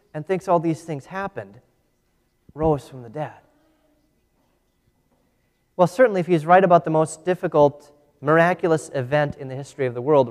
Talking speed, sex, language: 155 wpm, male, English